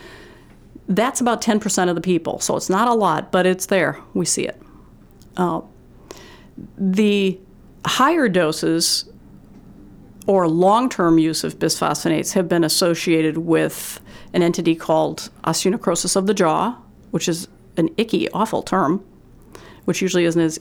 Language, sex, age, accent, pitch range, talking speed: English, female, 40-59, American, 165-200 Hz, 135 wpm